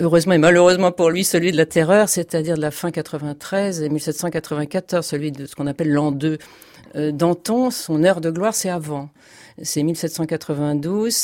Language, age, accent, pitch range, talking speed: French, 50-69, French, 150-180 Hz, 170 wpm